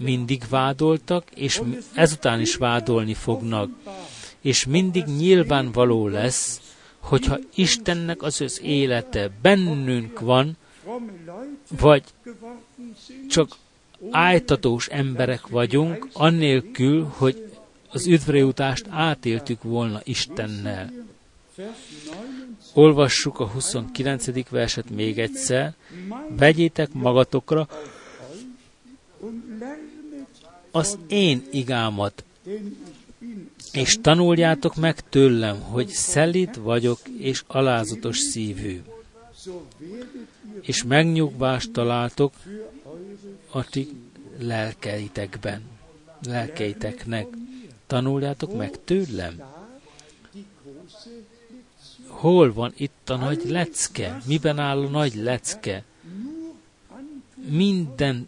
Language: Hungarian